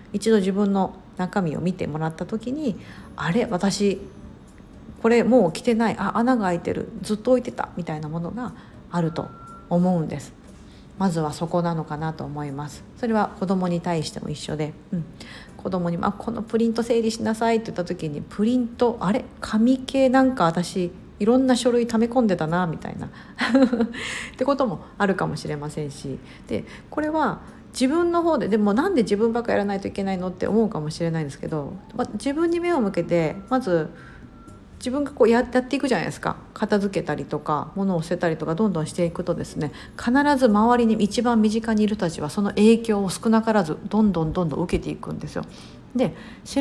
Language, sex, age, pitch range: Japanese, female, 50-69, 175-240 Hz